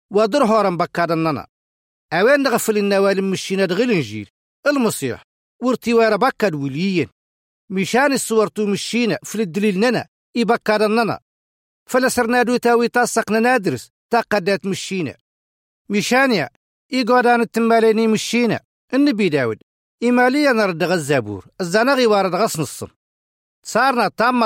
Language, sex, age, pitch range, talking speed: Arabic, male, 50-69, 170-235 Hz, 110 wpm